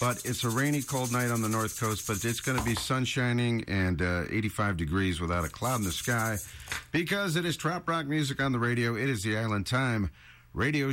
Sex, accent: male, American